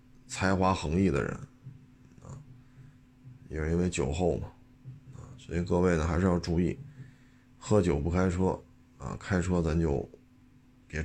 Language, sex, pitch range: Chinese, male, 90-125 Hz